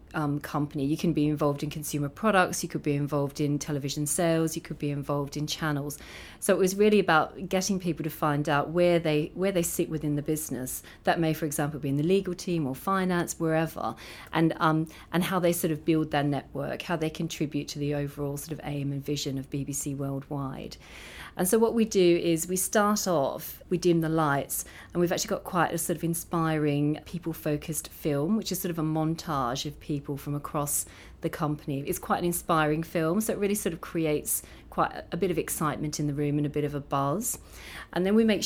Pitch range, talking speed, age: 145-170 Hz, 220 wpm, 40-59